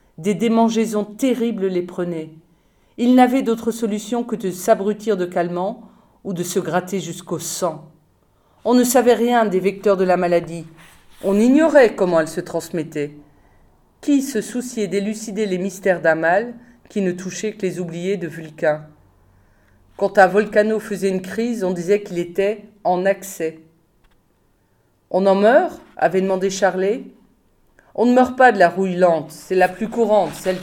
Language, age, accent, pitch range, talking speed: French, 40-59, French, 170-210 Hz, 160 wpm